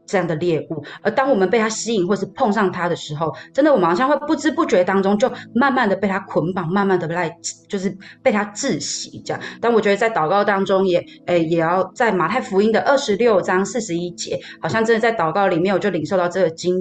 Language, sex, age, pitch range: Chinese, female, 20-39, 170-215 Hz